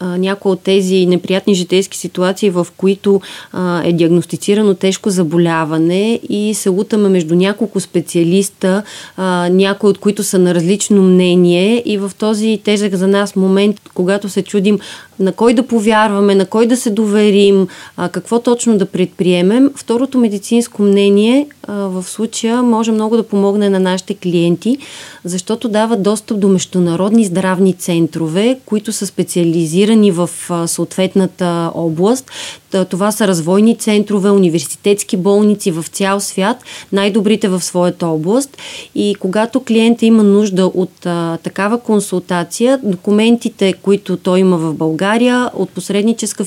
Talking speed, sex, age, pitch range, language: 140 wpm, female, 30-49, 180-215 Hz, Bulgarian